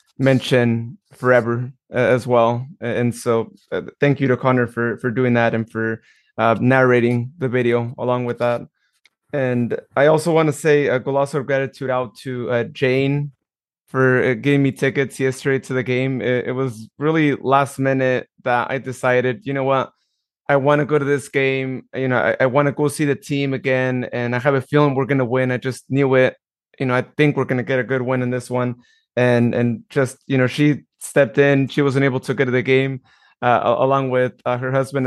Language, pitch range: English, 125-140 Hz